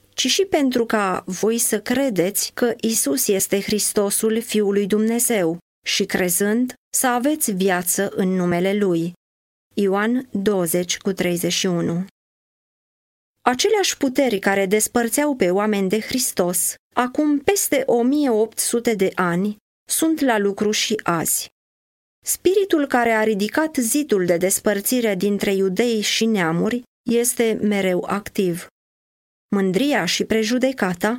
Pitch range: 195-255 Hz